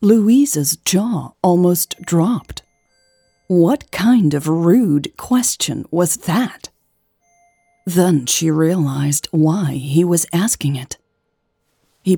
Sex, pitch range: female, 155-205 Hz